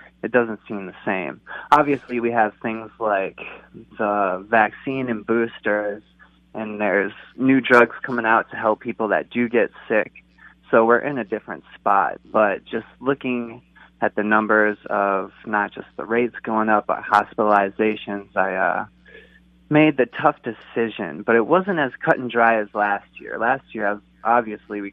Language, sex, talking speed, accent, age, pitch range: English, male, 165 wpm, American, 20-39, 105-125 Hz